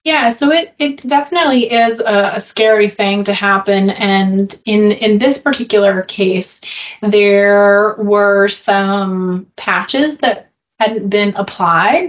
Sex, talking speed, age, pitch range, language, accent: female, 130 wpm, 20-39, 195-230 Hz, English, American